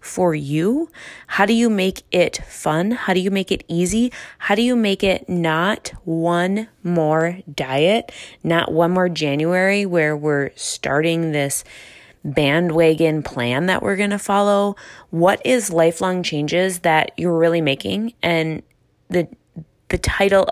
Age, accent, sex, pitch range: 20-39, American, female, 155-185 Hz